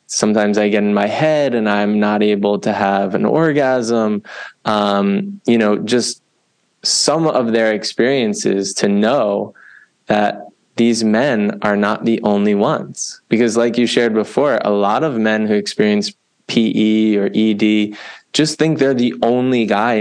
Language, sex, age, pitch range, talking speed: English, male, 20-39, 105-120 Hz, 155 wpm